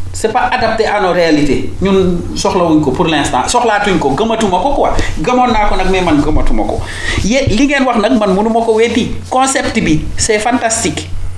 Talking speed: 160 wpm